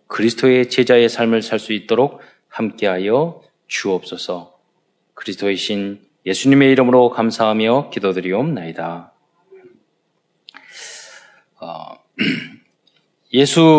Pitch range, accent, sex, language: 100-135 Hz, native, male, Korean